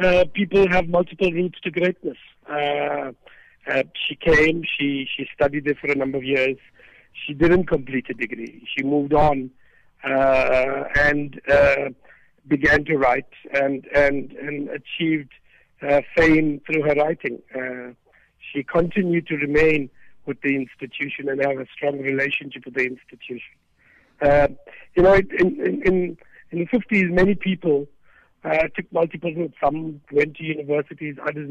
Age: 60-79